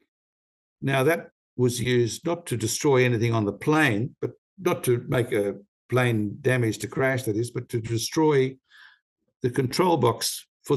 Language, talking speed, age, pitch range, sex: English, 160 wpm, 60-79, 110-135 Hz, male